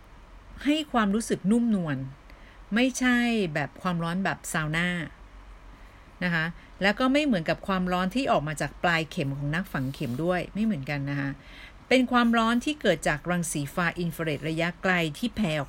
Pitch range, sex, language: 150-210 Hz, female, Thai